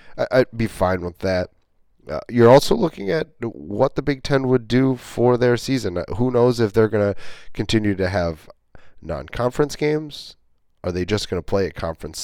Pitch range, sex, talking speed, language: 95-125 Hz, male, 185 wpm, English